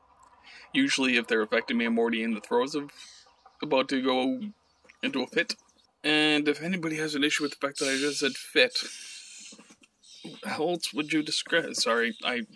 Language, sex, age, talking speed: English, male, 20-39, 180 wpm